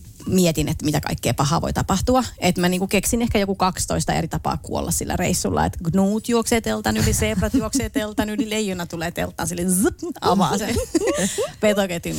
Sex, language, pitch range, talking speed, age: female, Finnish, 175-225 Hz, 165 wpm, 30-49